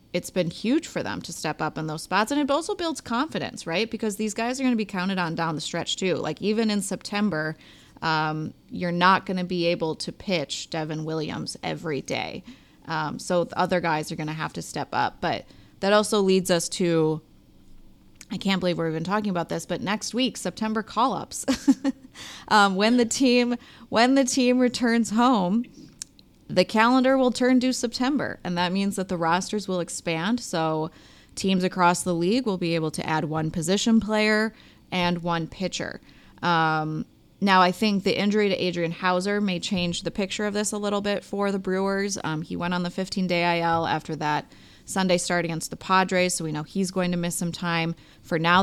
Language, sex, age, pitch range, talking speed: English, female, 20-39, 170-215 Hz, 195 wpm